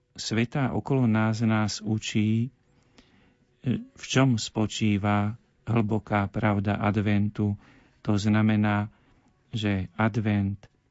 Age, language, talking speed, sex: 40-59, Slovak, 85 wpm, male